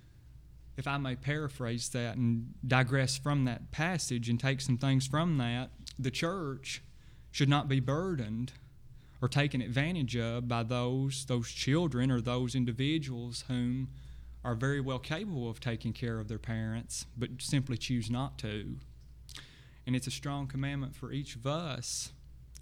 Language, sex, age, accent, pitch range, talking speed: English, male, 30-49, American, 115-135 Hz, 155 wpm